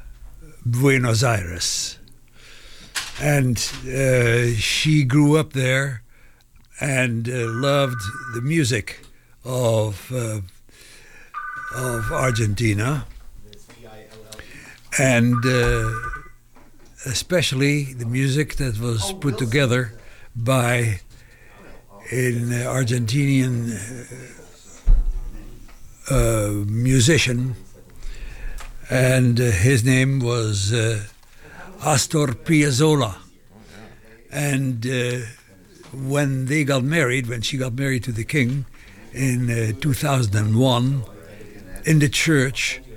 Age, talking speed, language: 60-79, 80 wpm, English